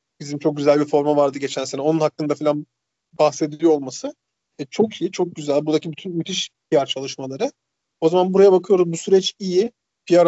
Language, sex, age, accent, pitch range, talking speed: Turkish, male, 40-59, native, 150-190 Hz, 180 wpm